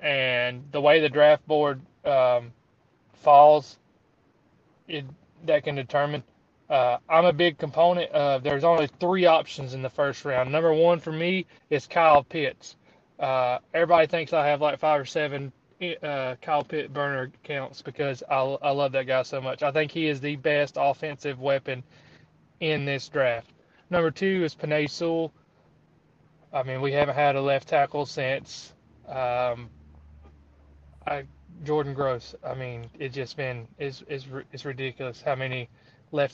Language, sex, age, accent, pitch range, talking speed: English, male, 20-39, American, 130-155 Hz, 155 wpm